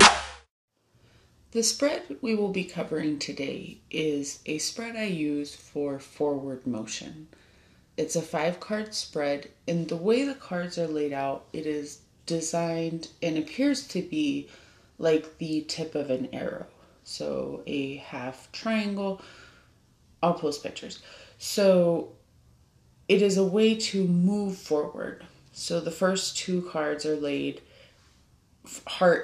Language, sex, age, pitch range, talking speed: English, female, 30-49, 135-170 Hz, 130 wpm